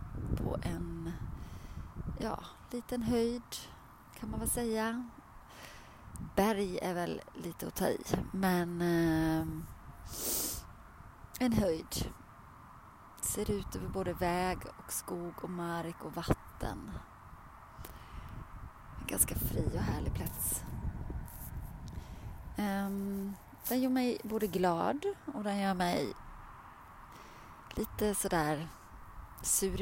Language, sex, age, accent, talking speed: Swedish, female, 30-49, native, 100 wpm